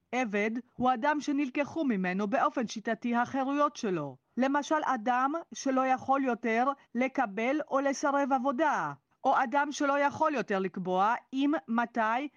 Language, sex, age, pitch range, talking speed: Hebrew, female, 40-59, 205-275 Hz, 125 wpm